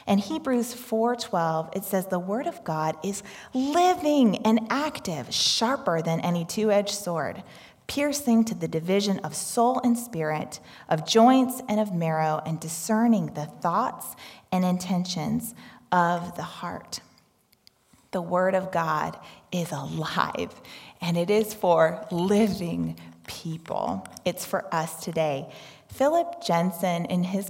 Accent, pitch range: American, 170-230 Hz